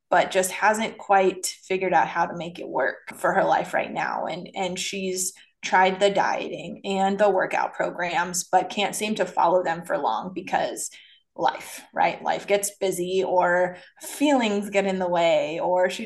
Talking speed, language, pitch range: 180 wpm, English, 185-210 Hz